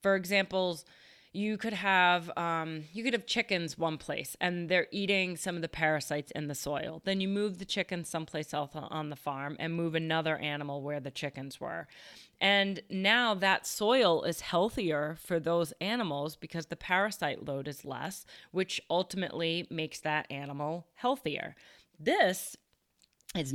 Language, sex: English, female